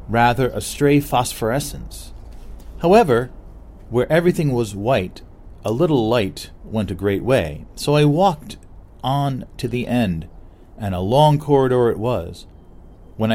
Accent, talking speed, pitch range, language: American, 135 wpm, 90-125 Hz, English